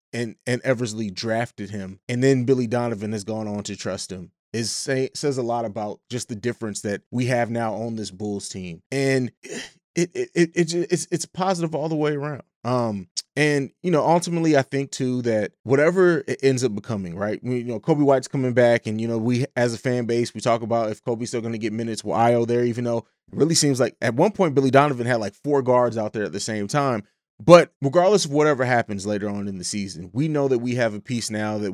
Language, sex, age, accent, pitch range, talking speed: English, male, 30-49, American, 110-145 Hz, 240 wpm